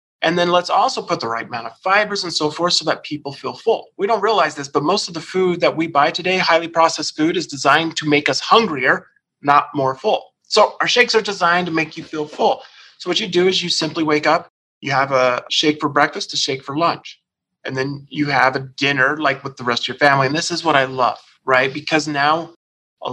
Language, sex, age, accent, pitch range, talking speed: English, male, 30-49, American, 135-170 Hz, 245 wpm